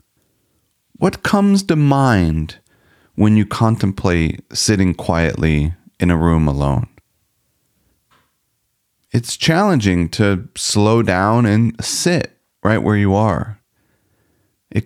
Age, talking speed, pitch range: 40-59, 100 wpm, 100-125 Hz